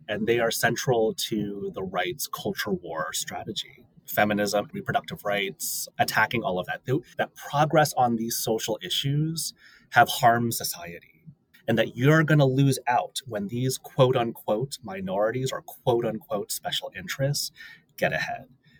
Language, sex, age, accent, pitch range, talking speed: English, male, 30-49, American, 115-155 Hz, 135 wpm